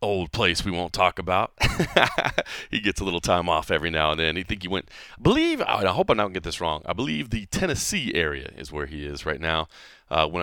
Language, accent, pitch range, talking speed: English, American, 75-90 Hz, 240 wpm